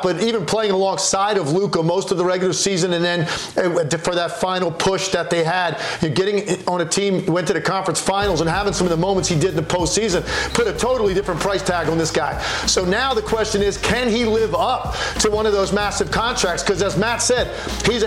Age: 40-59